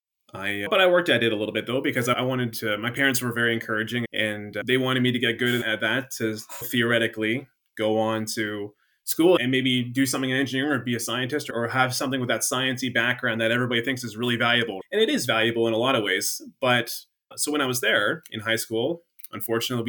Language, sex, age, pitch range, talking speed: English, male, 20-39, 110-130 Hz, 230 wpm